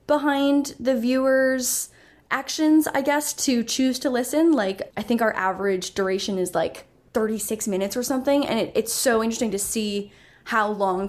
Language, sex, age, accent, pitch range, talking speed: English, female, 10-29, American, 190-245 Hz, 170 wpm